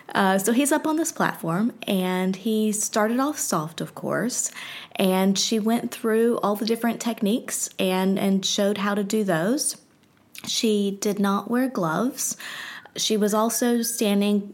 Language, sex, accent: English, female, American